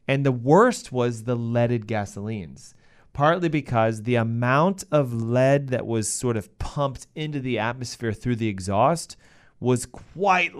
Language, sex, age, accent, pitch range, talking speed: English, male, 30-49, American, 115-150 Hz, 145 wpm